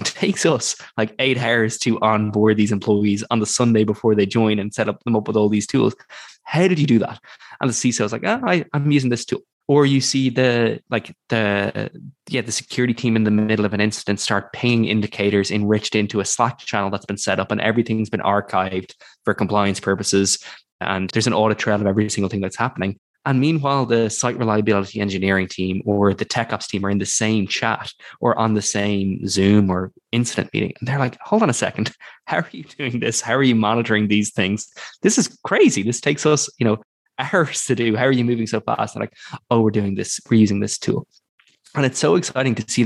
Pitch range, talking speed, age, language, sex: 105-120 Hz, 230 wpm, 20-39, English, male